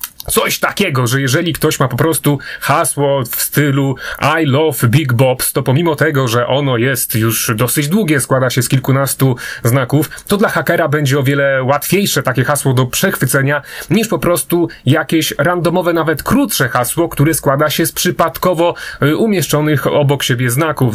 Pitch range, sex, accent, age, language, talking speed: 130-155 Hz, male, native, 30-49, Polish, 165 wpm